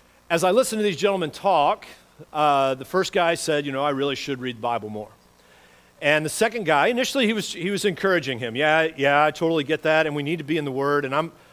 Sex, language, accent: male, English, American